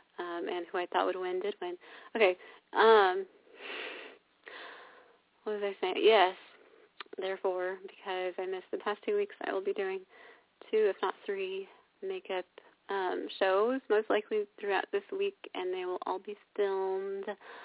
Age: 30-49